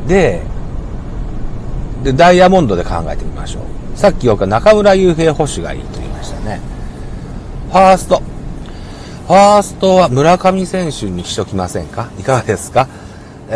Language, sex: Japanese, male